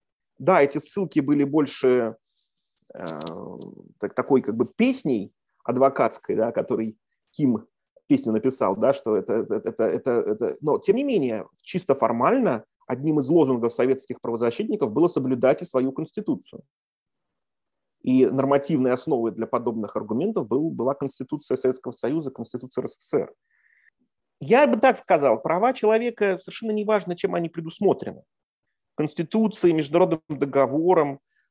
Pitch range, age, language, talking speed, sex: 125-185 Hz, 30-49, English, 130 wpm, male